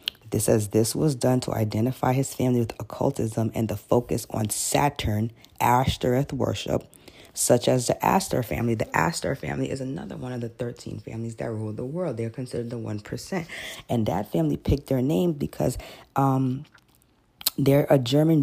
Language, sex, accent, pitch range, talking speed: English, female, American, 120-170 Hz, 170 wpm